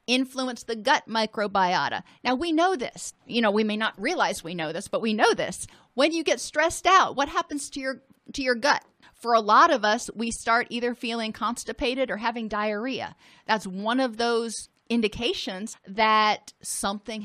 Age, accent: 40-59, American